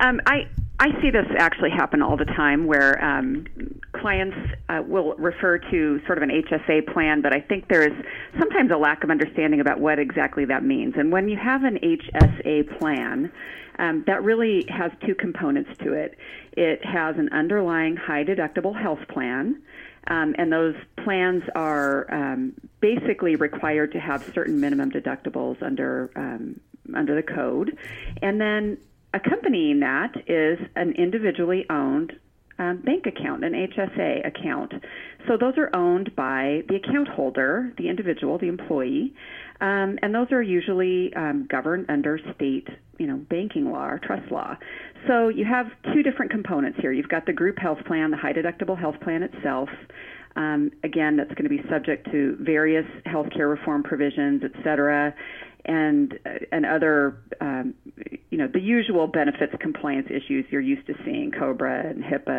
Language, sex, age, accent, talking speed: English, female, 40-59, American, 165 wpm